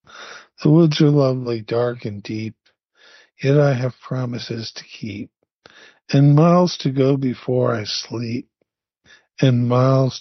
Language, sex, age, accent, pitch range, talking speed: English, male, 50-69, American, 125-150 Hz, 130 wpm